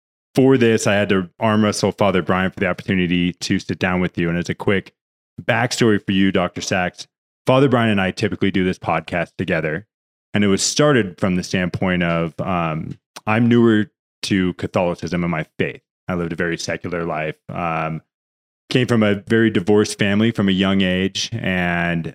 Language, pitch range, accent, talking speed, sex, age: English, 85-105 Hz, American, 185 wpm, male, 20-39